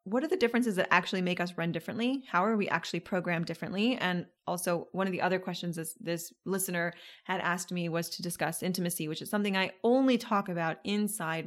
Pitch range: 170-210 Hz